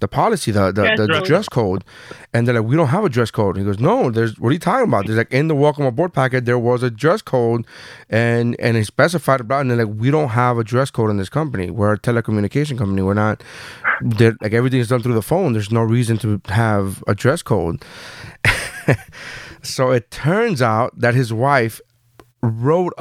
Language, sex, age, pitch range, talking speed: English, male, 30-49, 115-145 Hz, 220 wpm